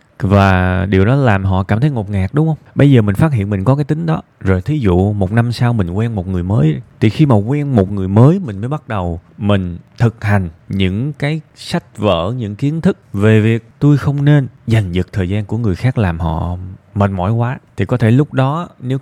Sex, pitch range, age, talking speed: male, 95-125 Hz, 20-39, 240 wpm